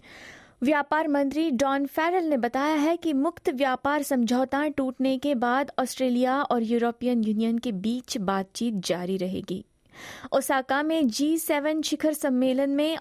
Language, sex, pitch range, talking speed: Hindi, female, 235-295 Hz, 135 wpm